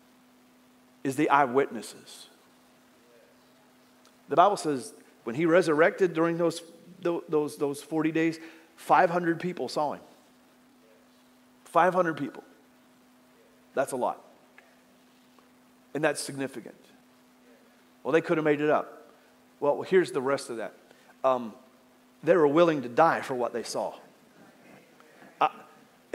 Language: English